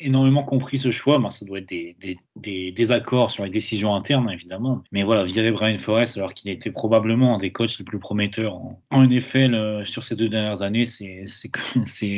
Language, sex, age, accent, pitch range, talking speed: French, male, 30-49, French, 100-125 Hz, 215 wpm